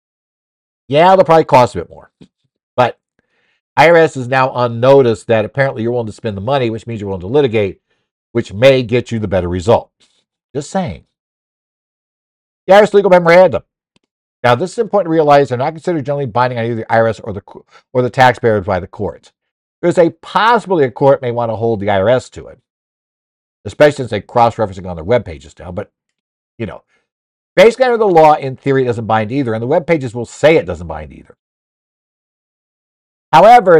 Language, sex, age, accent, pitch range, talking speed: English, male, 60-79, American, 110-145 Hz, 190 wpm